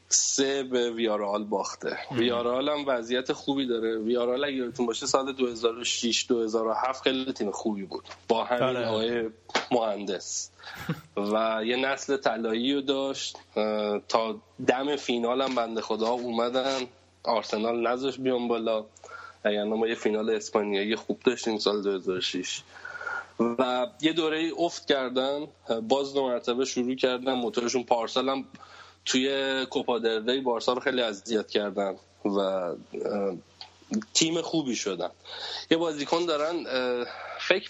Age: 20-39